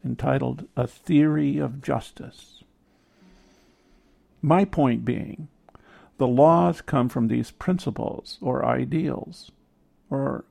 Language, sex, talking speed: English, male, 95 wpm